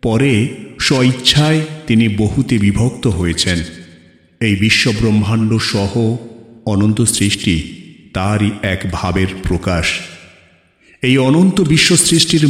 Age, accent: 50-69, native